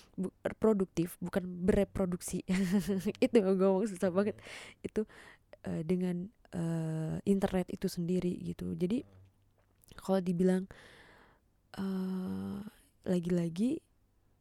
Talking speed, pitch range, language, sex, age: 90 wpm, 170-195 Hz, Indonesian, female, 20-39